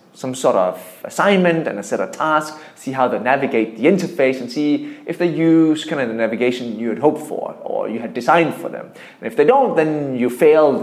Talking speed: 225 wpm